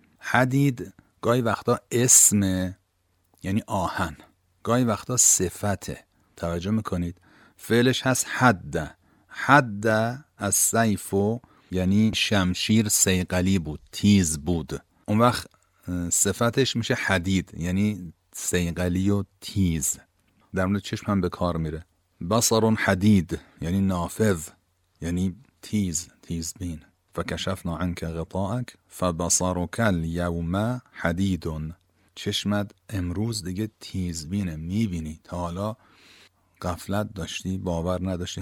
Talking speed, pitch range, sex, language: 95 wpm, 90-105 Hz, male, Persian